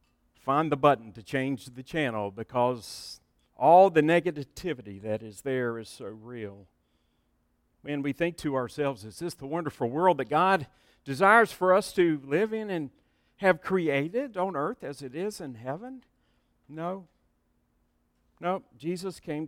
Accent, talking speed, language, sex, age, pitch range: American, 150 wpm, English, male, 50-69, 130-190 Hz